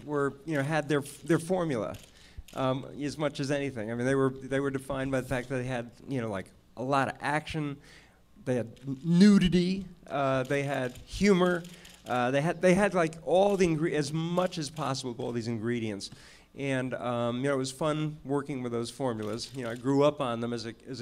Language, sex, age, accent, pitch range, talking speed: English, male, 50-69, American, 125-160 Hz, 225 wpm